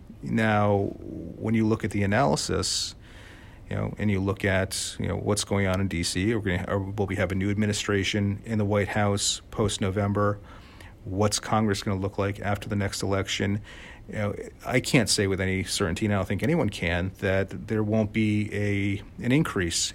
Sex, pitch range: male, 95-105 Hz